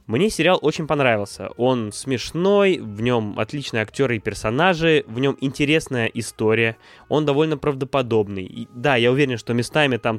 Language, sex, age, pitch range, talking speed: Russian, male, 20-39, 115-145 Hz, 145 wpm